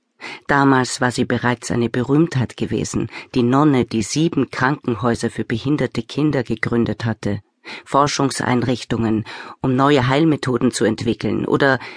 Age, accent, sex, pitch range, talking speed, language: 40-59, German, female, 120-155 Hz, 120 wpm, German